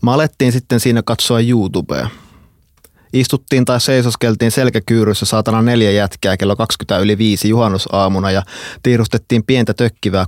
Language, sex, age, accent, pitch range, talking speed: Finnish, male, 20-39, native, 95-115 Hz, 115 wpm